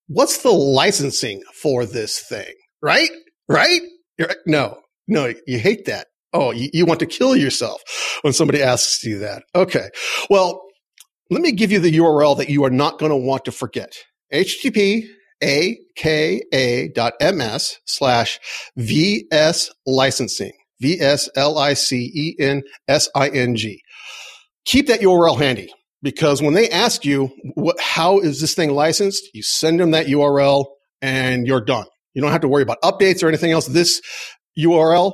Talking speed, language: 140 wpm, English